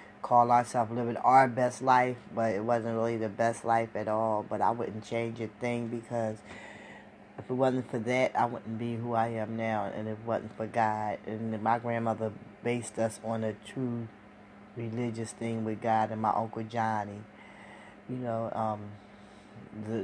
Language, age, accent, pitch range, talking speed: English, 10-29, American, 110-120 Hz, 180 wpm